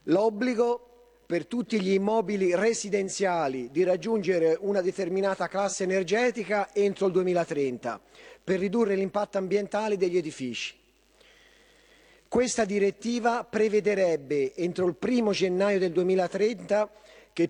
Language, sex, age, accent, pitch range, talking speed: Italian, male, 40-59, native, 180-225 Hz, 105 wpm